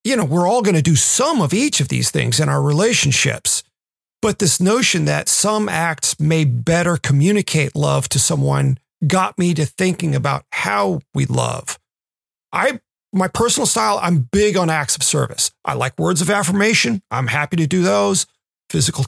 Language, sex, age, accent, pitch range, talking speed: English, male, 40-59, American, 150-200 Hz, 180 wpm